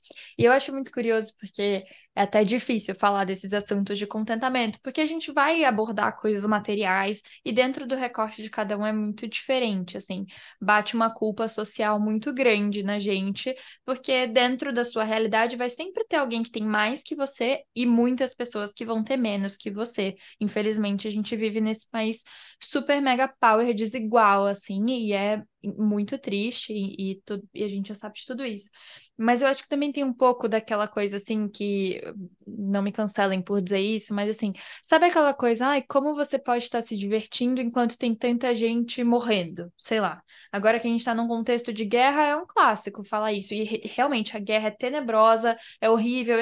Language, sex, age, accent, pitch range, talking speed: Portuguese, female, 10-29, Brazilian, 210-250 Hz, 195 wpm